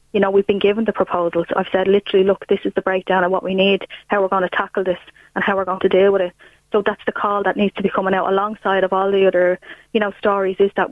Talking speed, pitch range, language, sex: 290 wpm, 190-205 Hz, English, female